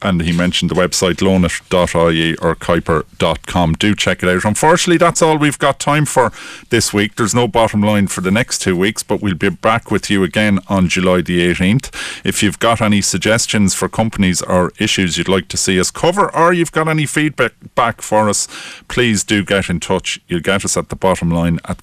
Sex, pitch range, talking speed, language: male, 90-120 Hz, 210 wpm, English